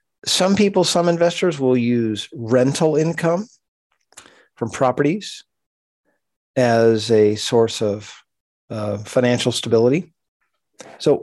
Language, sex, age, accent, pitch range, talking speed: English, male, 40-59, American, 115-145 Hz, 95 wpm